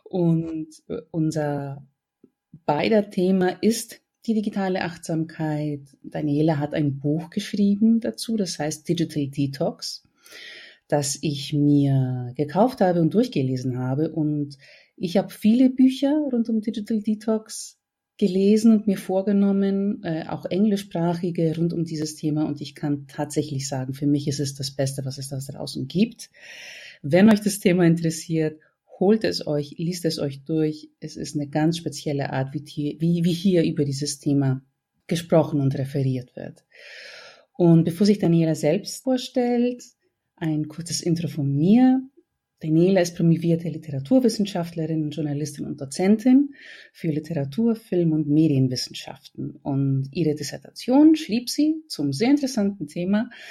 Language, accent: German, German